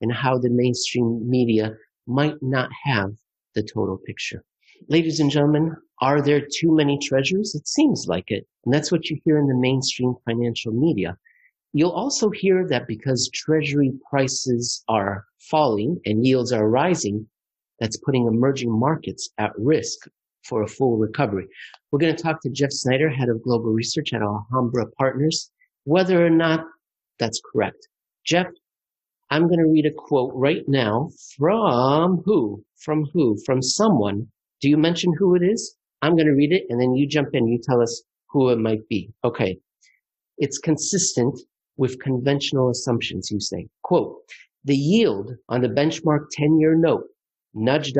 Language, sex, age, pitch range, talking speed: English, male, 50-69, 120-155 Hz, 160 wpm